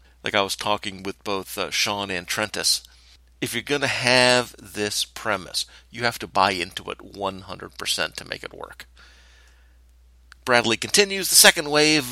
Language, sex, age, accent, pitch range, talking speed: English, male, 40-59, American, 90-125 Hz, 165 wpm